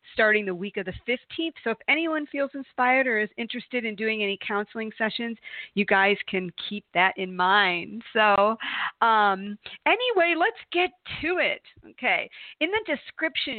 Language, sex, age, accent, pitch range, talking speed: English, female, 40-59, American, 185-250 Hz, 165 wpm